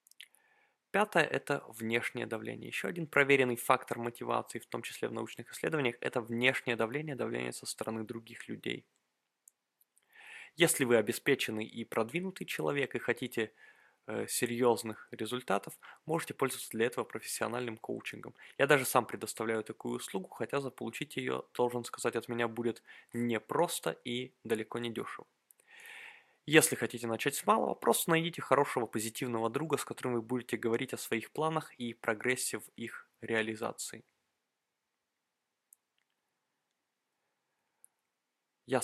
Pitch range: 115-135 Hz